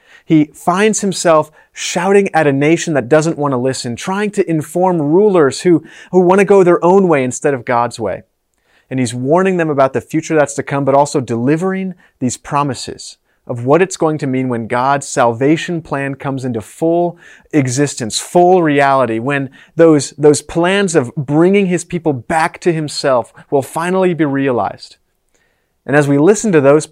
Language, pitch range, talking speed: English, 125-175 Hz, 180 wpm